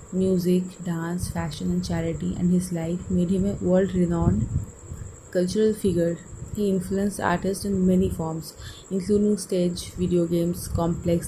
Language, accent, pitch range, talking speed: English, Indian, 165-195 Hz, 135 wpm